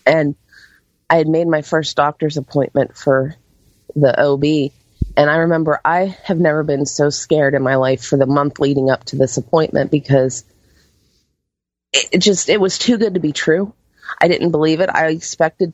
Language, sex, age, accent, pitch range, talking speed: English, female, 30-49, American, 130-160 Hz, 180 wpm